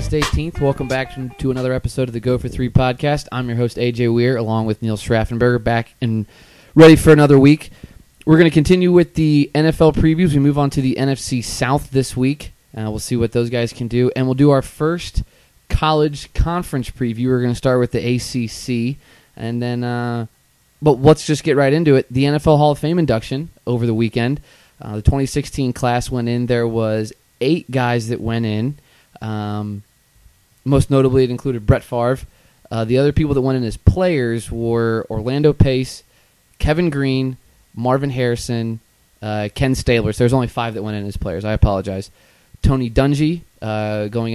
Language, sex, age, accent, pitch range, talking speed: English, male, 20-39, American, 110-135 Hz, 190 wpm